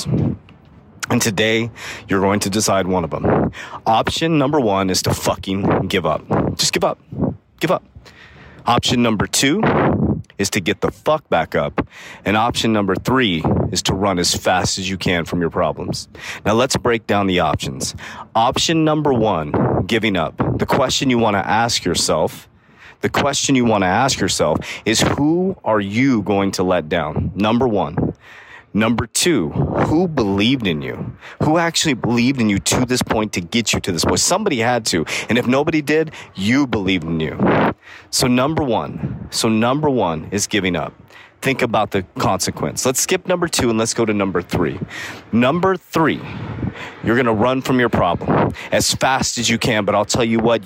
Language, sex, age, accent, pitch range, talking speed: English, male, 30-49, American, 100-130 Hz, 185 wpm